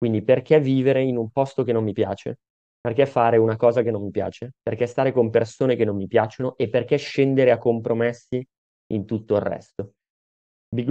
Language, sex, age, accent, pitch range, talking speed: Italian, male, 20-39, native, 100-125 Hz, 200 wpm